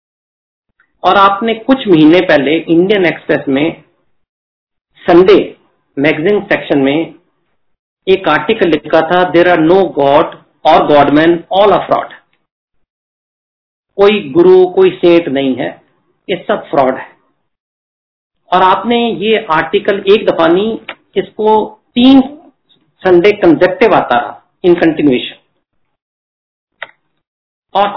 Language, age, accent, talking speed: Hindi, 50-69, native, 105 wpm